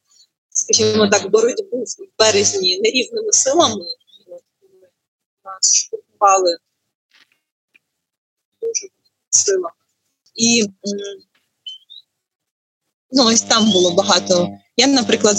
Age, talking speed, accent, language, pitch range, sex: 20-39, 80 wpm, native, Ukrainian, 195-240 Hz, female